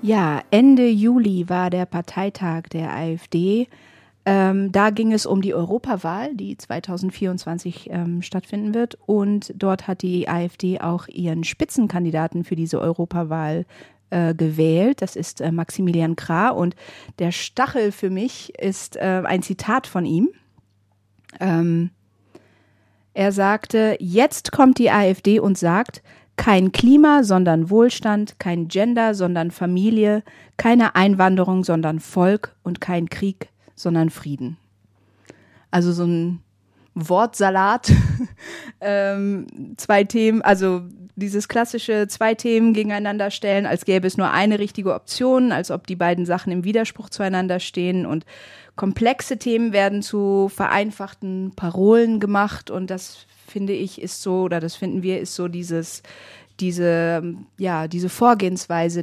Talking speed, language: 130 wpm, German